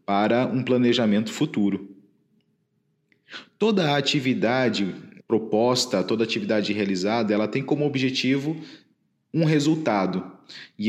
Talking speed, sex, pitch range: 95 wpm, male, 115-150 Hz